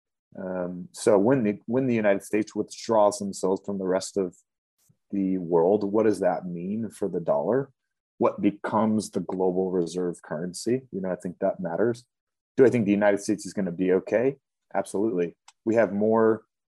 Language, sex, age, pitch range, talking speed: English, male, 30-49, 95-110 Hz, 180 wpm